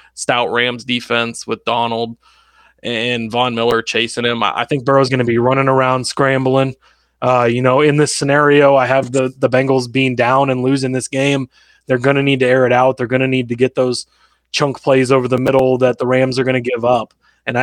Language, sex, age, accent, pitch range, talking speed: English, male, 20-39, American, 115-135 Hz, 220 wpm